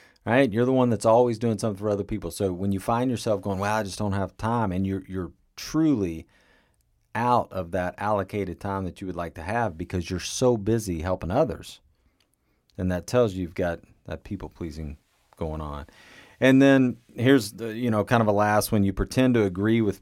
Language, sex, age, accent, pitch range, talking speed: English, male, 40-59, American, 85-110 Hz, 215 wpm